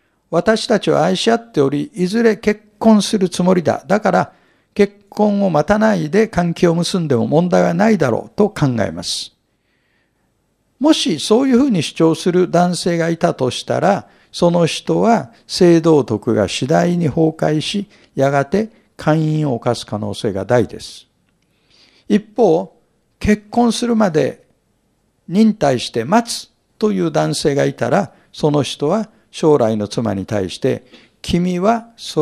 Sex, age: male, 60-79